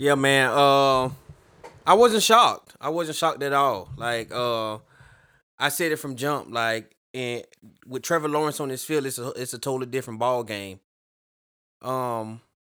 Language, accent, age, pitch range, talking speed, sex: English, American, 20-39, 120-160 Hz, 165 wpm, male